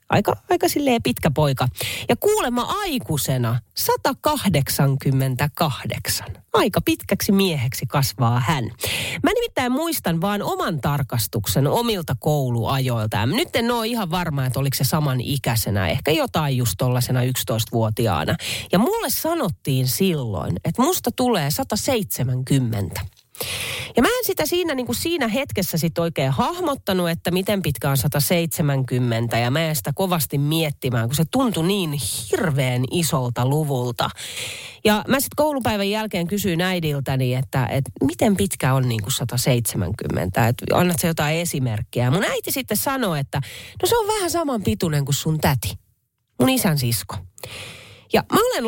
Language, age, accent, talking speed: Finnish, 40-59, native, 140 wpm